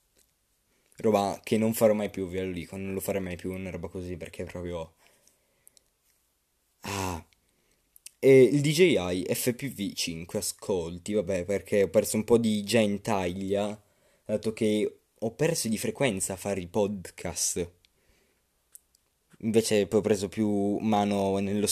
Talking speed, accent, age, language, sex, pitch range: 145 wpm, native, 20-39, Italian, male, 95-110 Hz